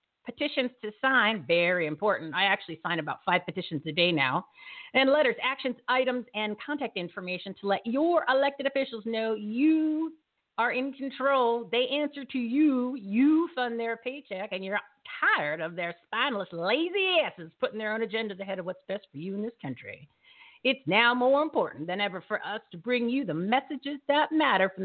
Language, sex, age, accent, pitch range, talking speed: English, female, 50-69, American, 200-275 Hz, 185 wpm